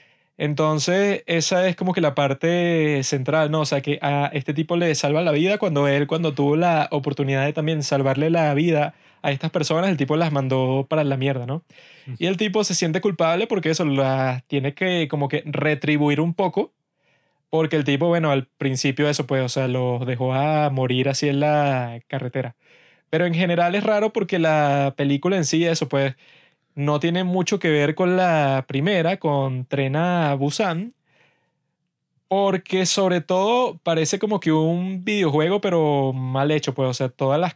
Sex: male